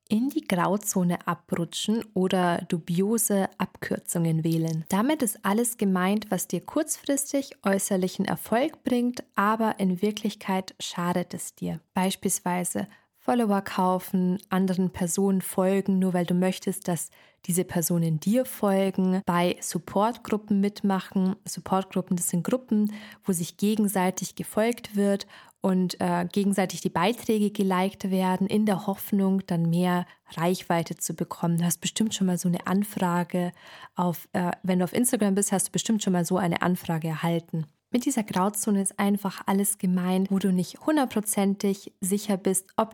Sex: female